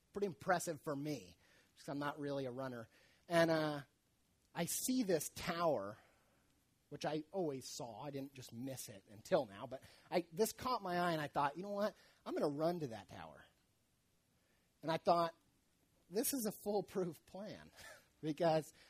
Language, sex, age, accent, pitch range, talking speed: English, male, 30-49, American, 135-185 Hz, 170 wpm